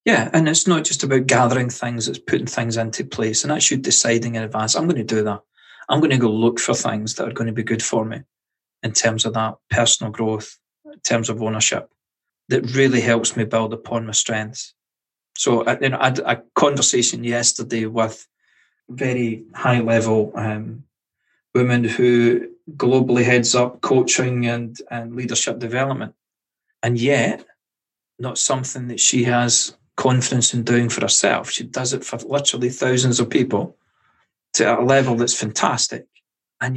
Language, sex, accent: English, male, British